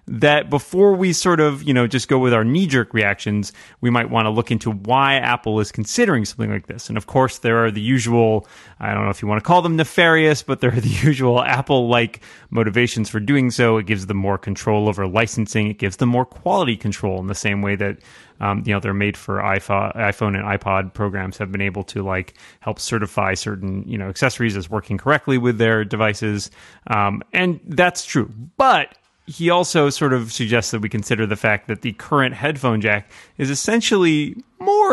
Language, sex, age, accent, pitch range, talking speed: English, male, 30-49, American, 105-130 Hz, 210 wpm